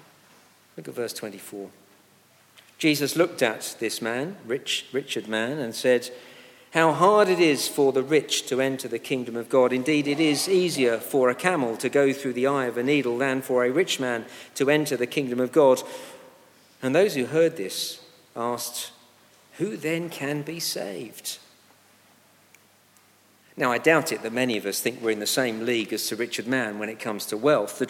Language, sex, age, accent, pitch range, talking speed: English, male, 50-69, British, 125-180 Hz, 185 wpm